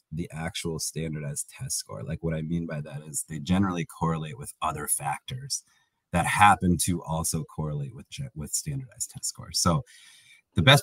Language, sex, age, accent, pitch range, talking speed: English, male, 30-49, American, 80-105 Hz, 170 wpm